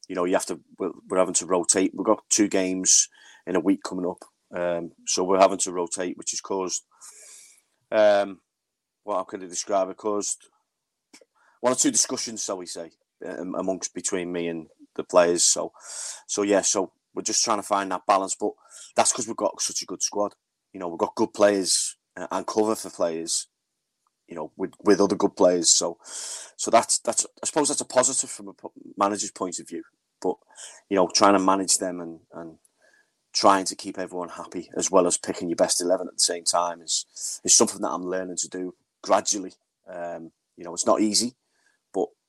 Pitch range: 90-105 Hz